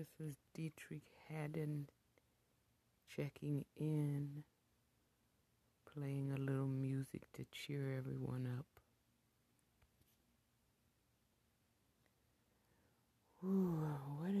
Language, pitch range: English, 120-150 Hz